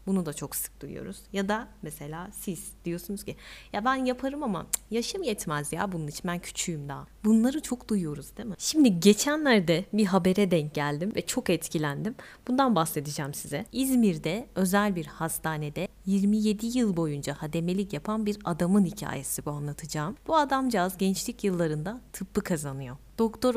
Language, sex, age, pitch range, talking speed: Turkish, female, 30-49, 165-225 Hz, 155 wpm